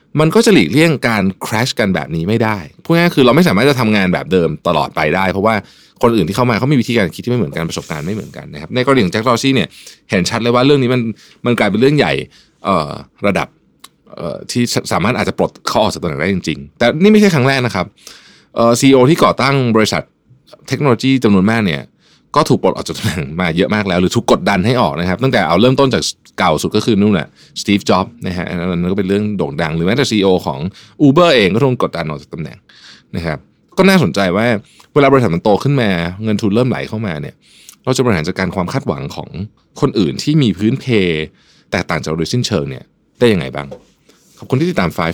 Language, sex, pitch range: Thai, male, 90-135 Hz